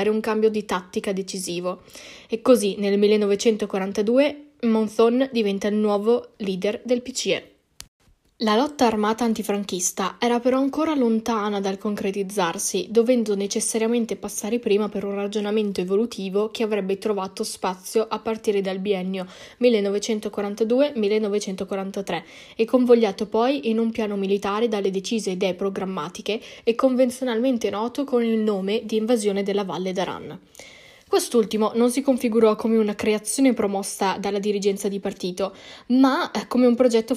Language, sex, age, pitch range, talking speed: Italian, female, 10-29, 200-230 Hz, 130 wpm